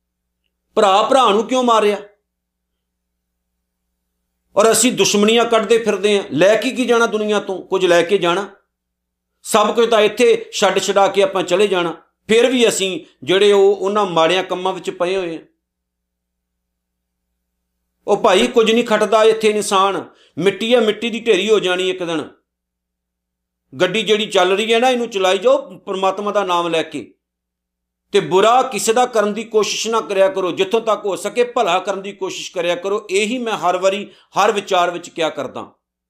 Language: Punjabi